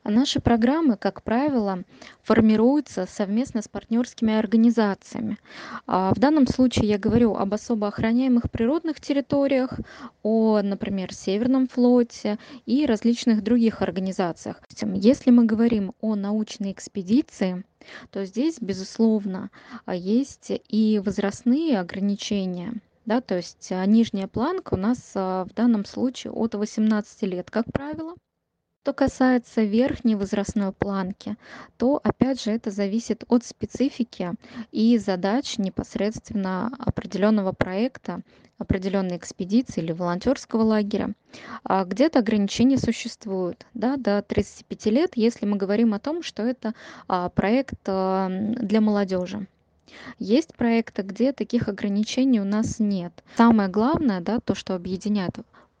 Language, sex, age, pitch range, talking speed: Russian, female, 20-39, 200-245 Hz, 115 wpm